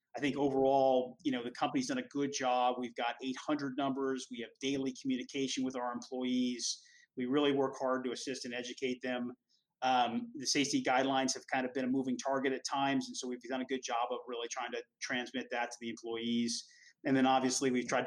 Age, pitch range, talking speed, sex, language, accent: 30-49, 125-135 Hz, 215 wpm, male, English, American